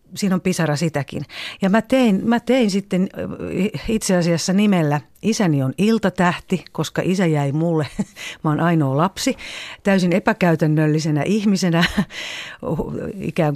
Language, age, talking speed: Finnish, 50-69, 125 wpm